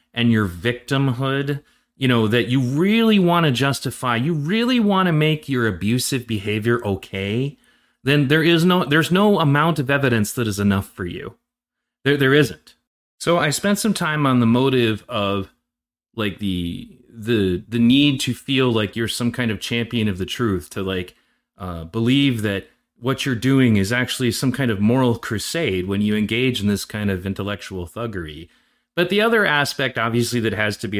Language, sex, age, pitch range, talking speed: English, male, 30-49, 105-140 Hz, 185 wpm